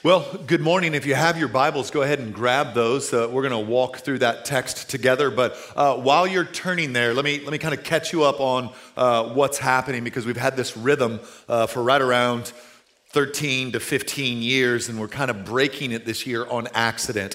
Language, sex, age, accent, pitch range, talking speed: English, male, 40-59, American, 125-150 Hz, 220 wpm